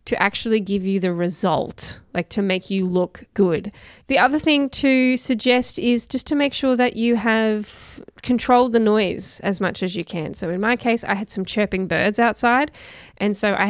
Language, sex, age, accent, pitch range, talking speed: English, female, 10-29, Australian, 185-230 Hz, 200 wpm